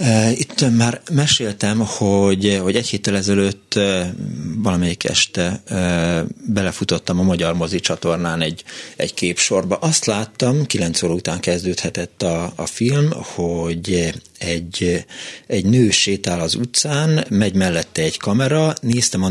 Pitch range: 85-110 Hz